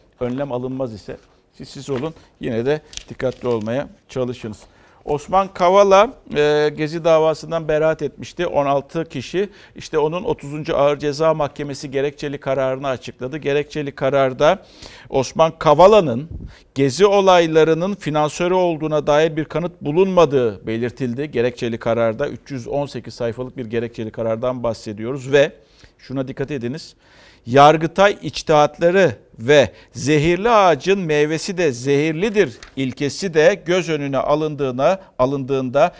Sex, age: male, 50-69